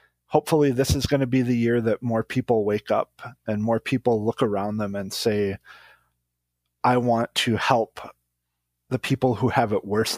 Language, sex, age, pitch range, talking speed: English, male, 30-49, 100-125 Hz, 185 wpm